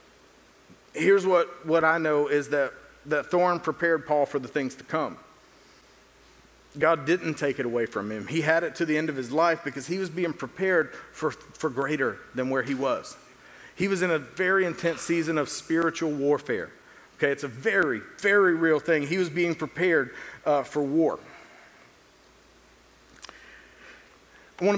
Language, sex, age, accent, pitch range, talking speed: English, male, 40-59, American, 135-170 Hz, 170 wpm